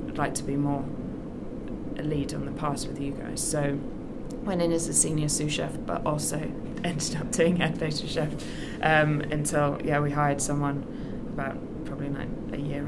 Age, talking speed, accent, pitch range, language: 20-39, 180 wpm, British, 145-155 Hz, English